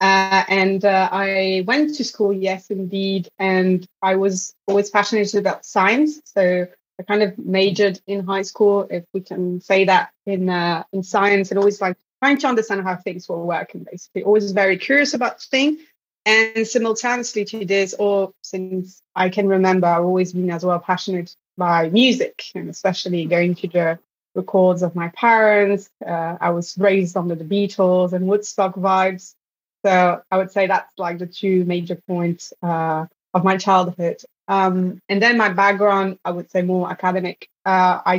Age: 20-39